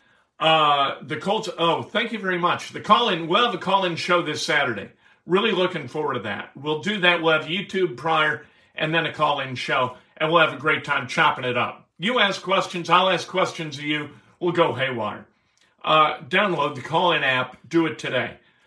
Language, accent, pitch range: English, American, 135-175 Hz